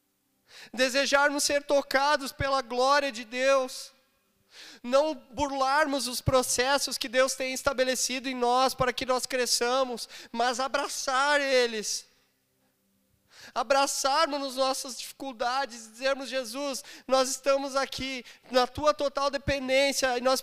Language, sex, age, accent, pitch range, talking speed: Portuguese, male, 20-39, Brazilian, 255-275 Hz, 115 wpm